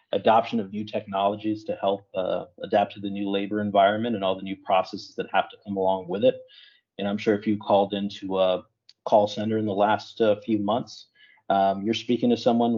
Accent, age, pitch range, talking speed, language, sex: American, 30-49, 95-110 Hz, 215 wpm, English, male